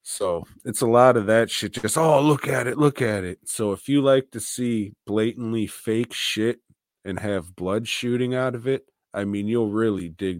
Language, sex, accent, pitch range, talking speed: English, male, American, 90-110 Hz, 210 wpm